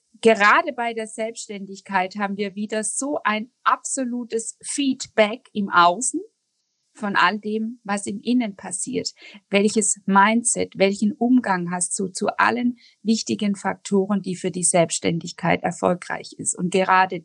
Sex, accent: female, German